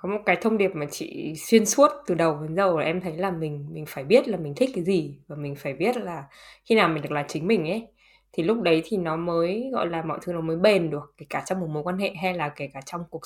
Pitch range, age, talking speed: 160-225 Hz, 10-29, 300 wpm